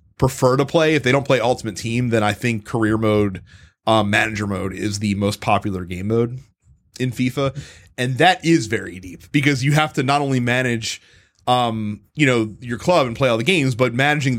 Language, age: English, 30-49